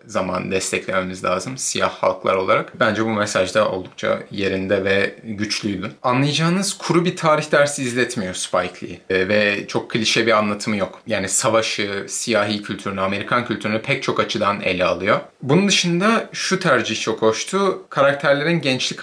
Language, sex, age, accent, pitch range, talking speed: Turkish, male, 30-49, native, 105-145 Hz, 150 wpm